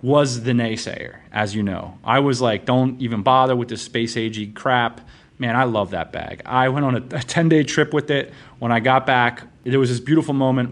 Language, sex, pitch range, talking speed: English, male, 110-135 Hz, 220 wpm